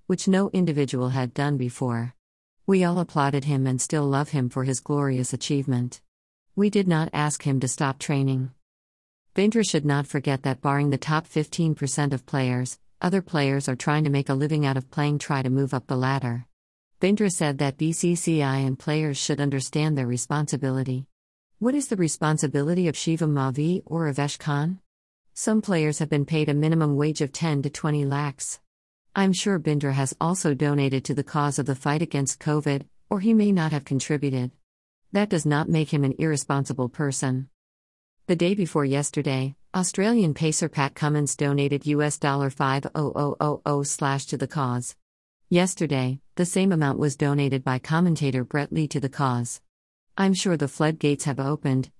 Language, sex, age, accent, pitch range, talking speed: English, female, 50-69, American, 135-160 Hz, 170 wpm